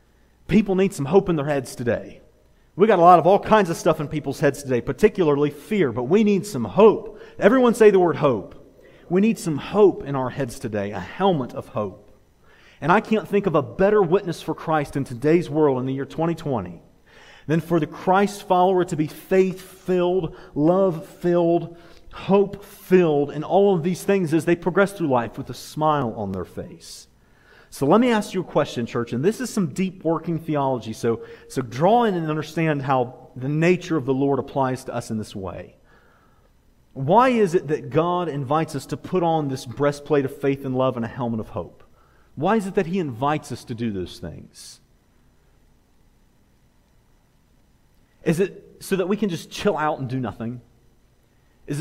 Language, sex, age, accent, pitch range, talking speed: English, male, 40-59, American, 130-185 Hz, 190 wpm